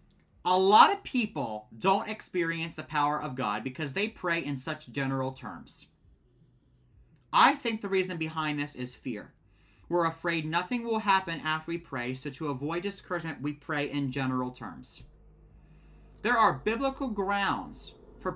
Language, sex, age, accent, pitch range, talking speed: English, male, 30-49, American, 110-175 Hz, 155 wpm